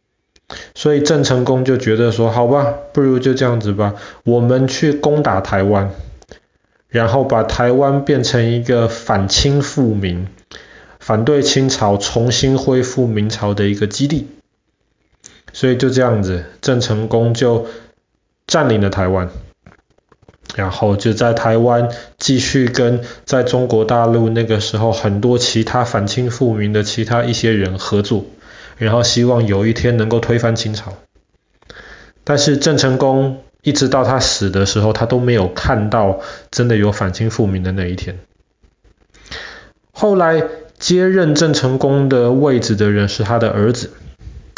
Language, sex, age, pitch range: Chinese, male, 20-39, 110-135 Hz